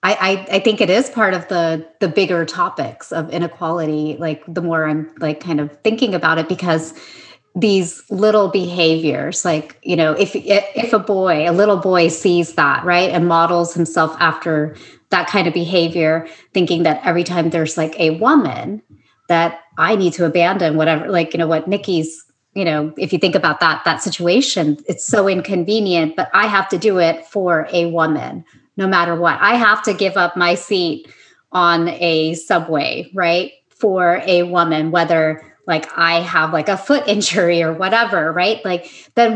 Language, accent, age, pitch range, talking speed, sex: English, American, 30-49, 165-200 Hz, 180 wpm, female